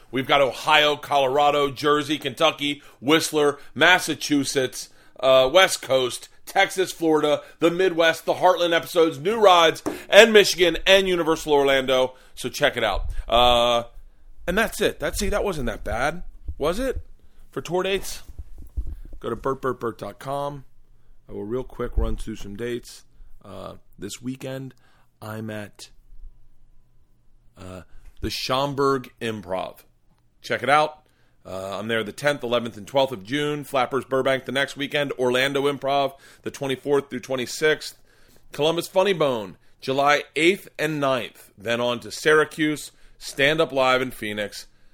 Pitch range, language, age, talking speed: 110-155 Hz, English, 40-59, 140 wpm